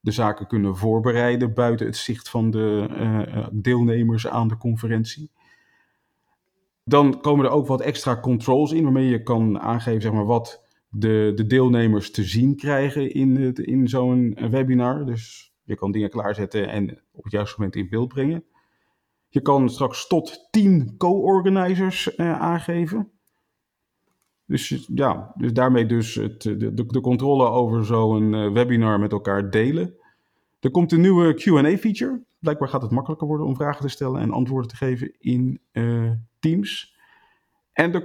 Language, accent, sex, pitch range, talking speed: Dutch, Dutch, male, 110-145 Hz, 155 wpm